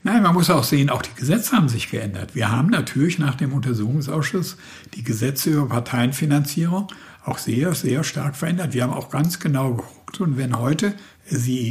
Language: German